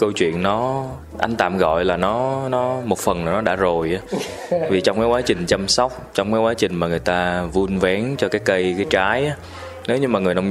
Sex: male